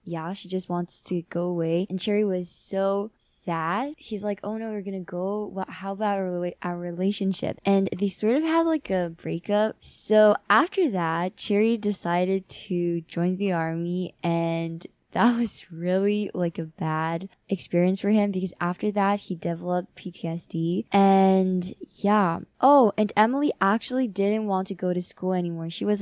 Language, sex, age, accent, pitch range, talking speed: English, female, 10-29, American, 175-205 Hz, 170 wpm